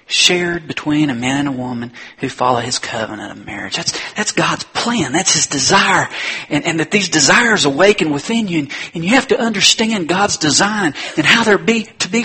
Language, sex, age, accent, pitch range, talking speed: English, male, 40-59, American, 140-190 Hz, 205 wpm